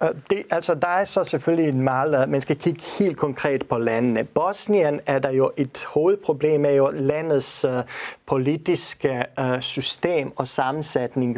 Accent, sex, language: native, male, Danish